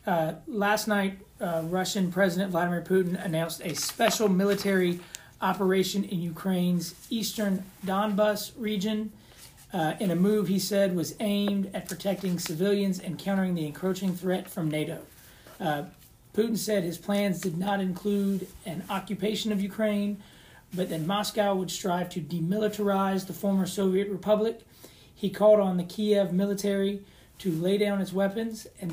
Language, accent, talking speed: English, American, 145 wpm